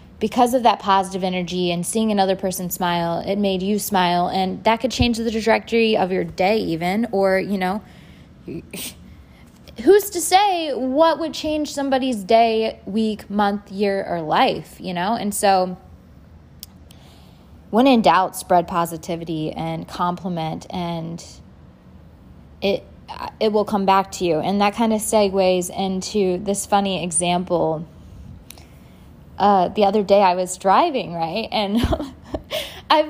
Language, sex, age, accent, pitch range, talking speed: English, female, 20-39, American, 175-220 Hz, 140 wpm